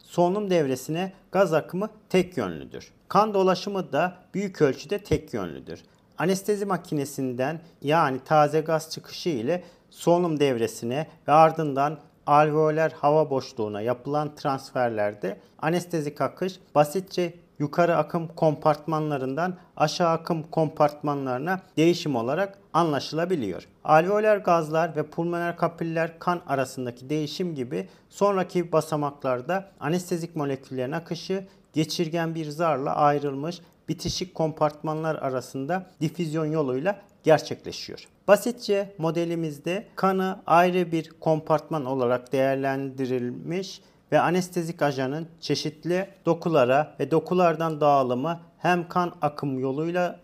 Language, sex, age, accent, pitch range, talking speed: Turkish, male, 40-59, native, 145-175 Hz, 100 wpm